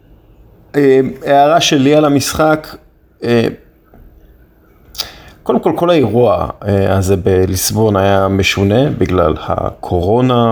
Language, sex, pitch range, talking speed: Hebrew, male, 95-120 Hz, 105 wpm